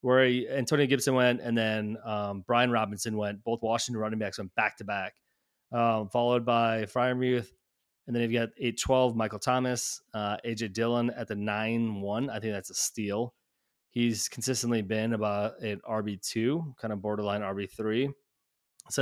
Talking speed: 165 wpm